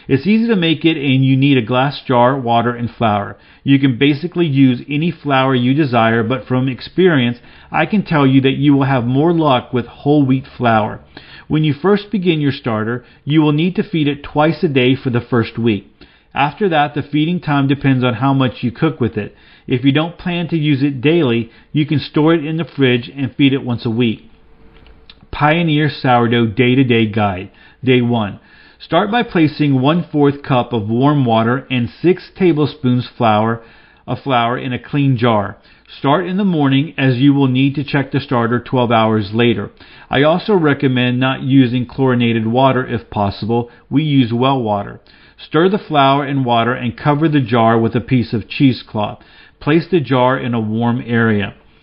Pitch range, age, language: 120-150 Hz, 40-59, English